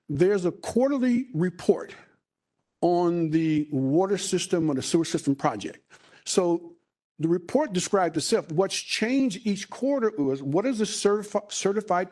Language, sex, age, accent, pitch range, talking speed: English, male, 50-69, American, 155-210 Hz, 135 wpm